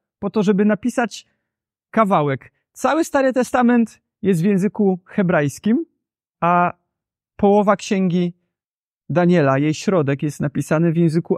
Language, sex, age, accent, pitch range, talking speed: Polish, male, 30-49, native, 140-205 Hz, 115 wpm